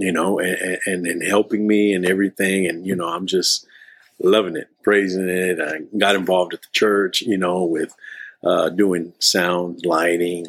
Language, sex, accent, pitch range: English, male, American, 95-125 Hz